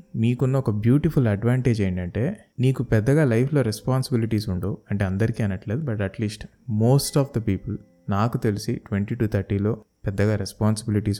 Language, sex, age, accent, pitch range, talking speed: Telugu, male, 20-39, native, 100-130 Hz, 140 wpm